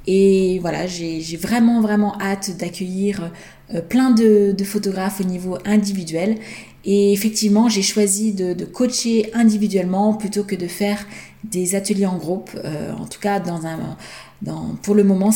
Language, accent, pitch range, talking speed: French, French, 180-215 Hz, 160 wpm